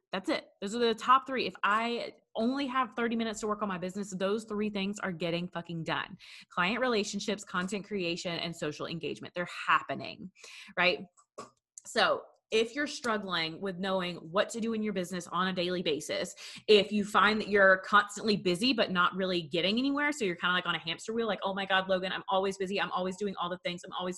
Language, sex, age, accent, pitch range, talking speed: English, female, 20-39, American, 180-220 Hz, 220 wpm